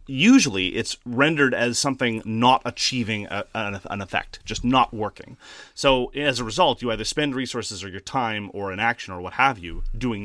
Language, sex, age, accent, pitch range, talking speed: English, male, 30-49, American, 95-135 Hz, 195 wpm